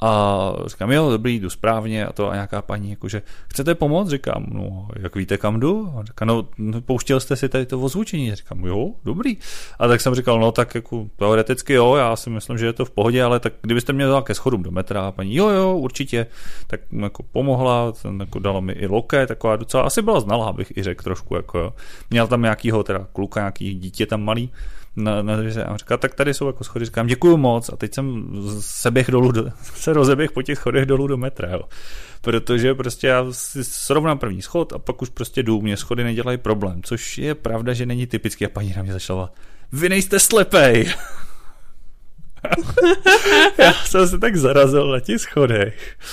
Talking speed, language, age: 200 wpm, Czech, 30-49